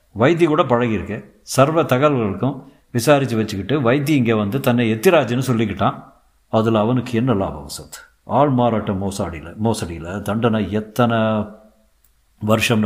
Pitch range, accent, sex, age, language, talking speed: 100-120 Hz, native, male, 50-69, Tamil, 115 wpm